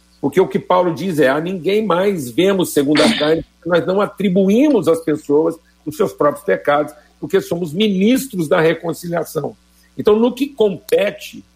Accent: Brazilian